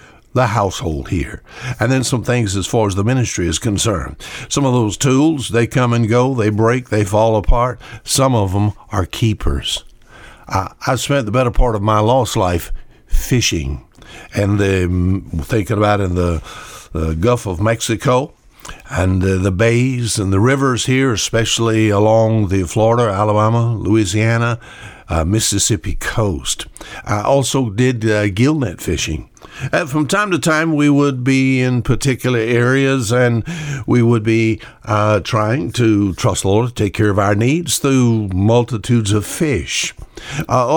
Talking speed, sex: 160 wpm, male